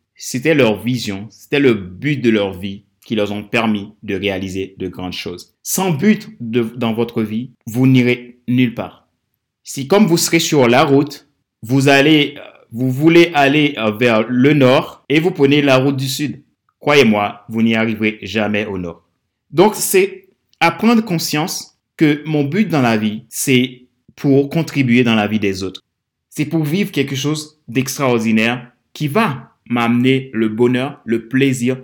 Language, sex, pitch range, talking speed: French, male, 110-145 Hz, 170 wpm